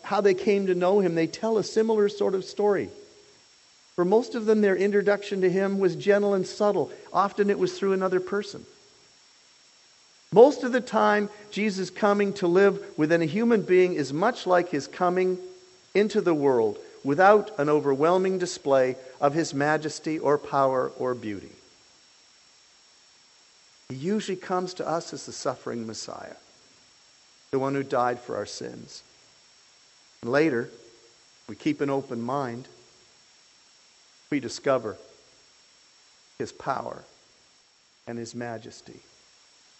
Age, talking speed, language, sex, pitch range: 50-69, 140 wpm, English, male, 135-195 Hz